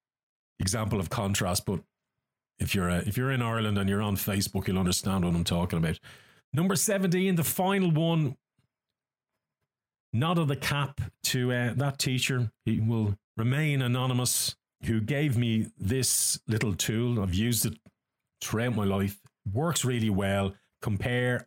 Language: English